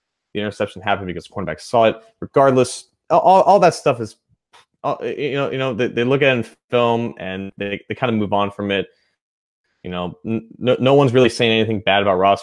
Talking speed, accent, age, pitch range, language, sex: 215 wpm, American, 30-49, 100-130 Hz, English, male